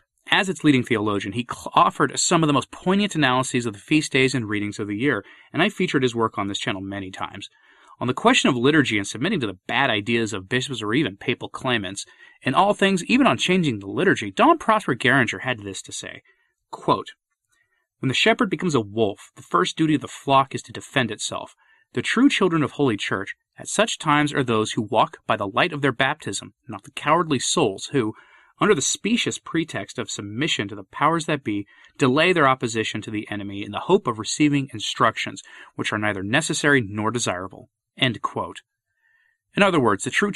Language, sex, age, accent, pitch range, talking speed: English, male, 30-49, American, 105-150 Hz, 205 wpm